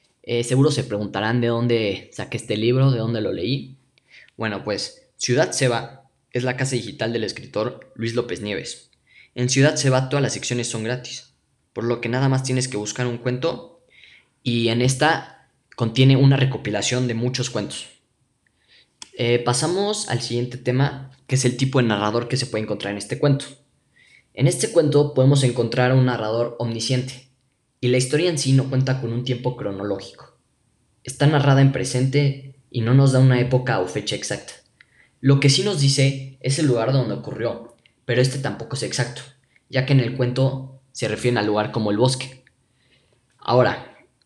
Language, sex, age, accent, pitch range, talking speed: English, male, 10-29, Mexican, 120-135 Hz, 180 wpm